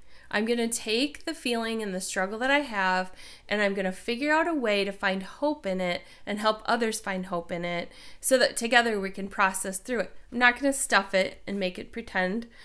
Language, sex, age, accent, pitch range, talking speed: English, female, 30-49, American, 190-240 Hz, 235 wpm